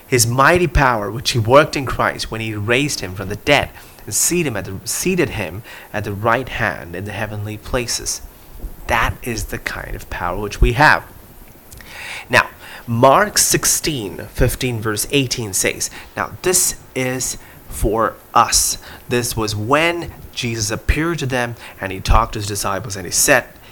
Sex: male